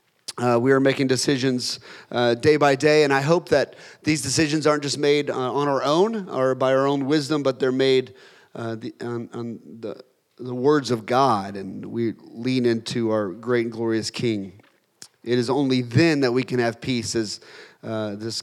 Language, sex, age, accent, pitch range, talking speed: English, male, 30-49, American, 120-155 Hz, 190 wpm